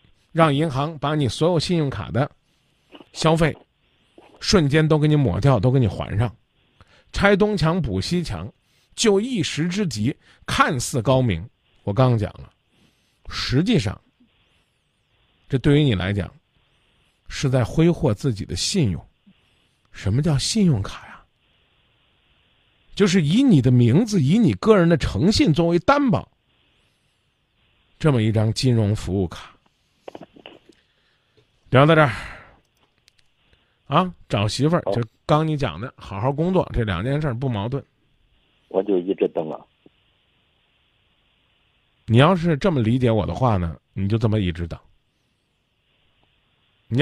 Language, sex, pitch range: Chinese, male, 110-160 Hz